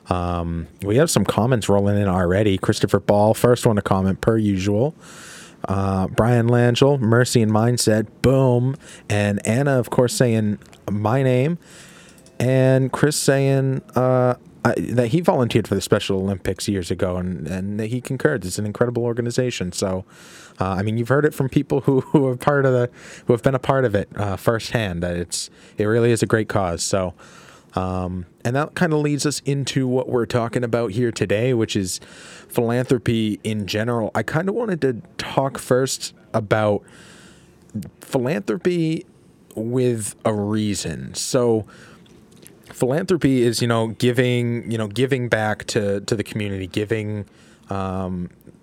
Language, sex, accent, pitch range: English, male, American, 100-130 Hz